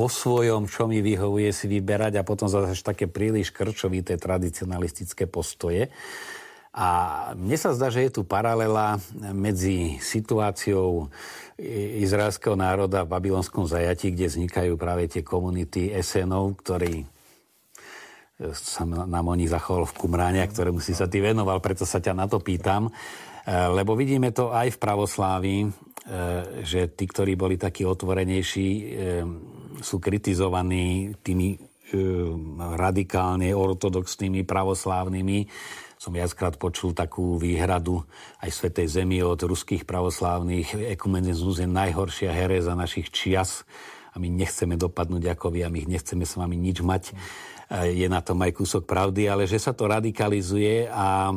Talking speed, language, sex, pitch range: 135 wpm, Slovak, male, 90-105 Hz